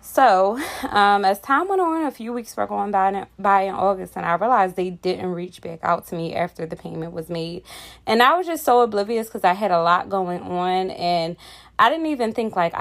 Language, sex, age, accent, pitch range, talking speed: English, female, 20-39, American, 175-210 Hz, 230 wpm